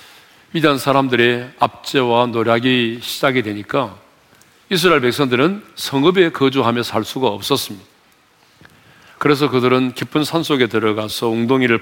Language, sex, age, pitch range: Korean, male, 40-59, 115-145 Hz